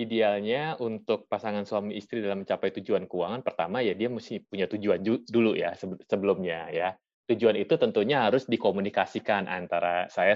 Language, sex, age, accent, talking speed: Indonesian, male, 20-39, native, 150 wpm